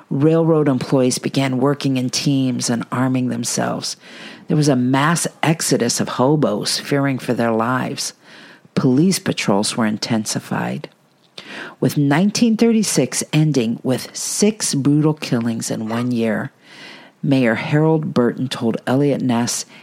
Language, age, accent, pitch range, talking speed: English, 50-69, American, 130-165 Hz, 120 wpm